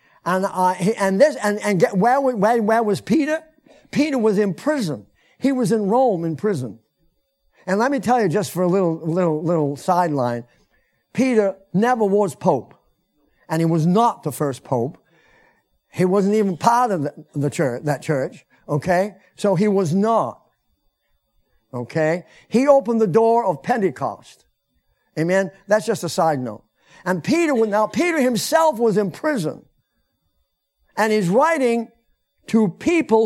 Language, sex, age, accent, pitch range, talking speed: English, male, 50-69, American, 175-245 Hz, 155 wpm